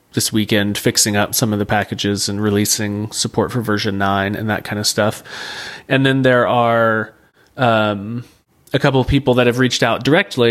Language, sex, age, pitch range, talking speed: English, male, 30-49, 110-130 Hz, 190 wpm